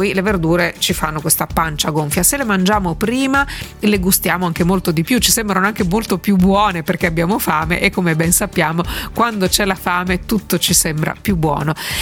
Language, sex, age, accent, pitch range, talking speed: Italian, female, 40-59, native, 165-200 Hz, 195 wpm